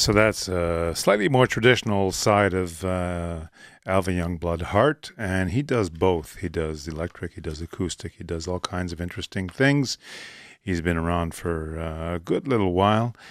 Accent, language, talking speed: American, English, 165 wpm